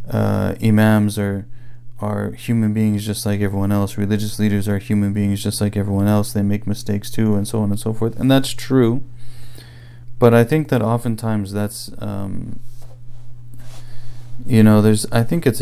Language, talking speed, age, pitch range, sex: English, 175 wpm, 30-49, 100-120 Hz, male